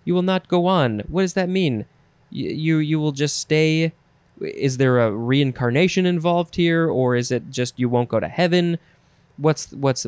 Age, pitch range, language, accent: 20-39, 125-175 Hz, English, American